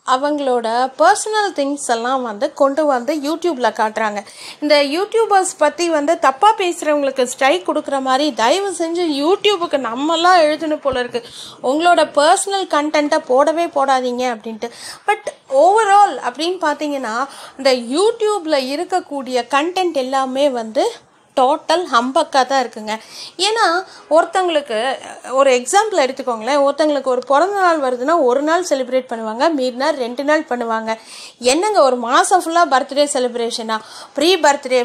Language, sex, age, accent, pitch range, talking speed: Tamil, female, 30-49, native, 250-345 Hz, 120 wpm